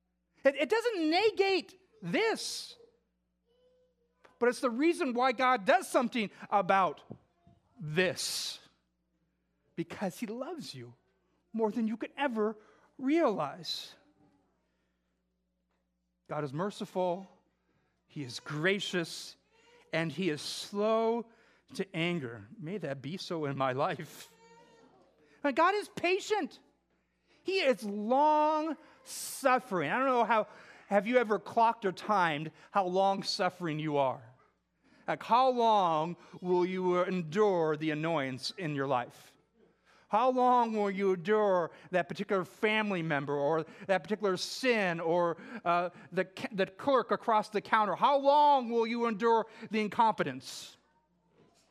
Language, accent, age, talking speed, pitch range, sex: English, American, 40-59, 120 wpm, 160-235 Hz, male